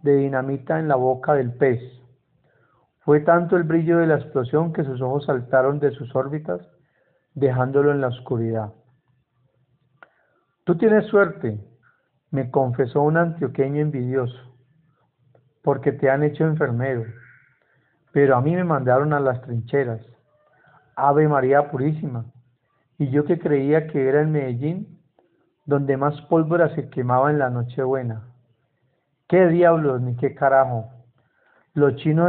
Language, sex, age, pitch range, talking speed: Spanish, male, 50-69, 130-155 Hz, 135 wpm